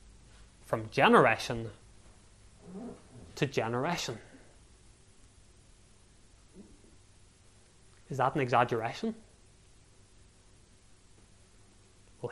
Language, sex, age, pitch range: English, male, 20-39, 100-145 Hz